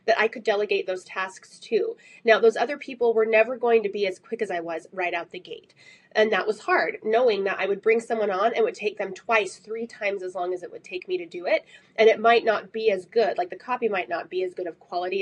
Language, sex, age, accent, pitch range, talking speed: English, female, 20-39, American, 195-270 Hz, 275 wpm